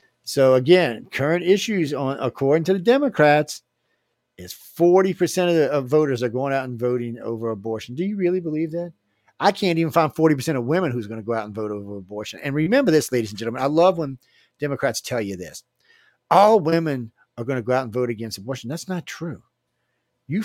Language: English